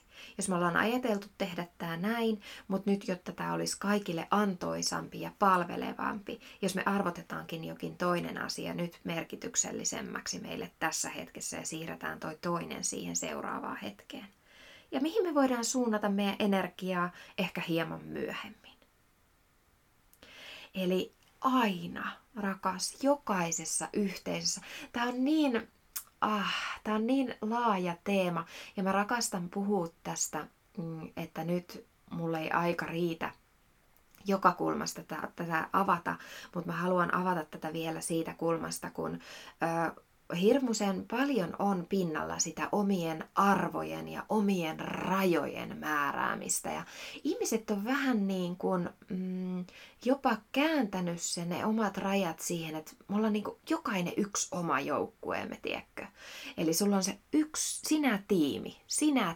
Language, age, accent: Finnish, 20-39, native